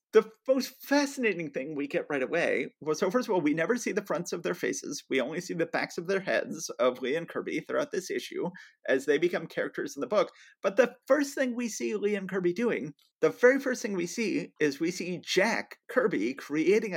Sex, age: male, 30-49